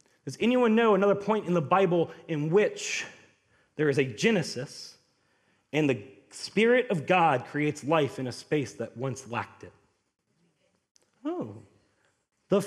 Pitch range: 135-190 Hz